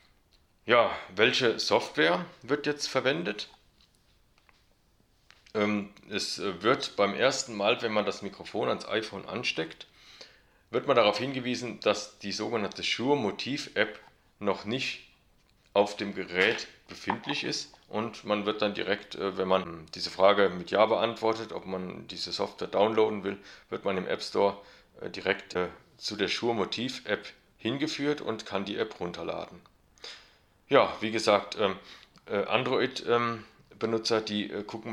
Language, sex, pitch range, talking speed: German, male, 95-110 Hz, 130 wpm